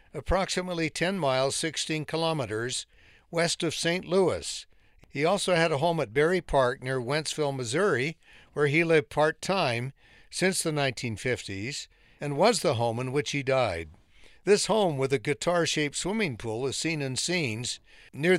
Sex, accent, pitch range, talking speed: male, American, 130-170 Hz, 155 wpm